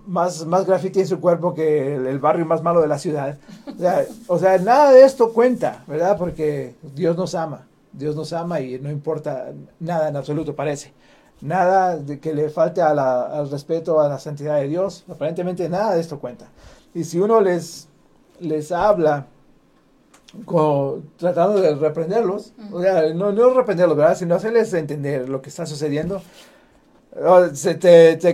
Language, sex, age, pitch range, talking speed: Spanish, male, 40-59, 155-200 Hz, 175 wpm